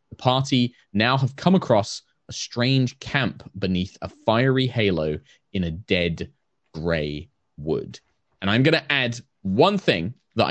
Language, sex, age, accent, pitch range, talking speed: English, male, 20-39, British, 100-140 Hz, 150 wpm